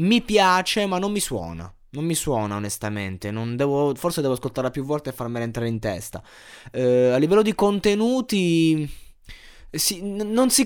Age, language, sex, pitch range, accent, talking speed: 20-39, Italian, male, 125-175 Hz, native, 175 wpm